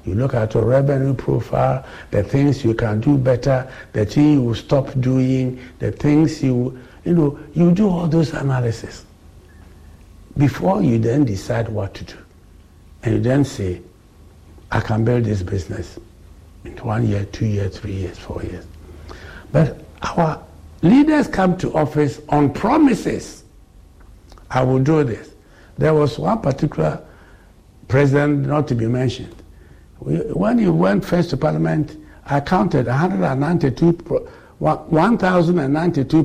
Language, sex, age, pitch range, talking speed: English, male, 60-79, 100-155 Hz, 135 wpm